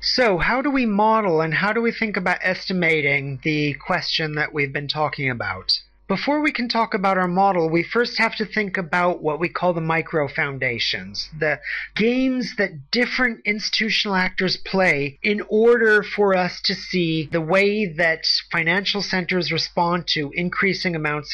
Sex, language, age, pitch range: male, English, 30-49, 155-195 Hz